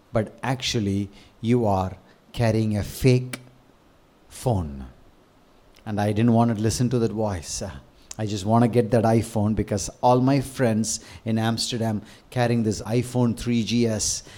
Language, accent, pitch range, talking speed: English, Indian, 110-130 Hz, 140 wpm